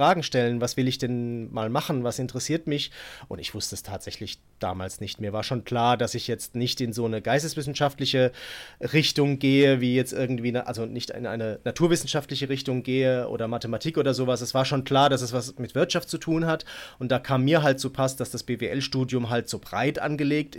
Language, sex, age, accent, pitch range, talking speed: German, male, 30-49, German, 120-140 Hz, 215 wpm